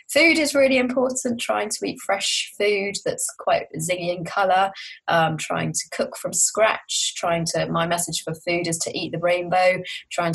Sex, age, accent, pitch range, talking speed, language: female, 20-39, British, 170-230 Hz, 185 wpm, English